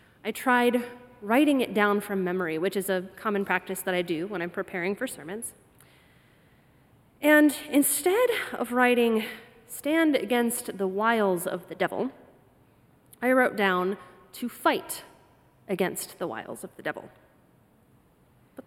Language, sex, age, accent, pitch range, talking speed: English, female, 30-49, American, 195-250 Hz, 140 wpm